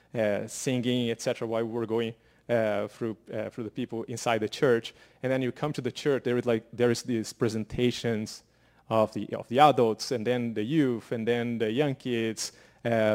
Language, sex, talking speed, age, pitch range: English, male, 205 wpm, 30-49, 115-130 Hz